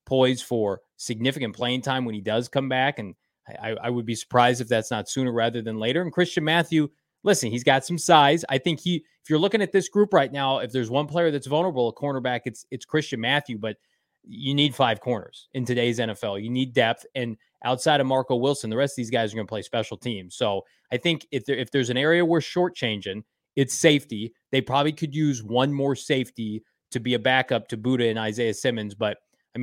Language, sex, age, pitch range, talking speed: English, male, 20-39, 120-140 Hz, 225 wpm